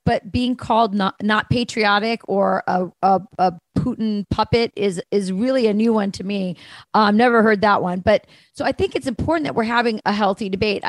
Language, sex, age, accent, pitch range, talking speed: English, female, 30-49, American, 190-225 Hz, 210 wpm